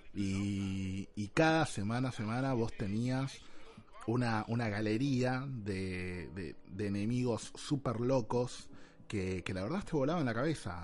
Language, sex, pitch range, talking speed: Spanish, male, 105-145 Hz, 140 wpm